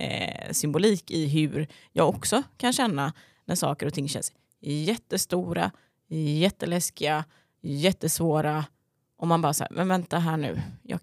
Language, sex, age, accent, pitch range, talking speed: Swedish, female, 20-39, native, 140-180 Hz, 130 wpm